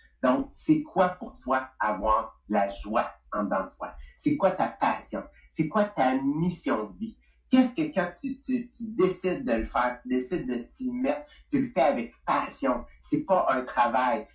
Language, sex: English, male